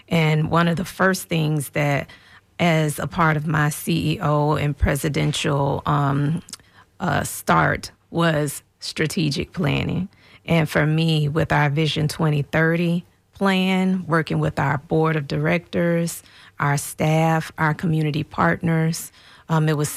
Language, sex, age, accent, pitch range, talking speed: English, female, 30-49, American, 140-160 Hz, 130 wpm